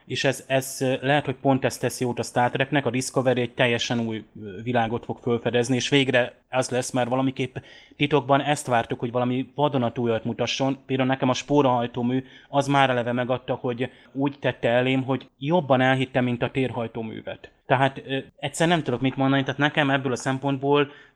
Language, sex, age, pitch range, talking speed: Hungarian, male, 20-39, 120-135 Hz, 175 wpm